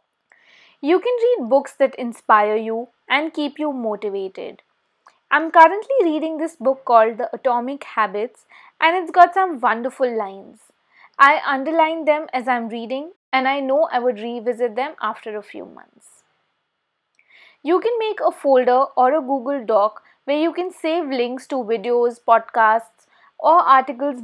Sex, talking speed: female, 155 wpm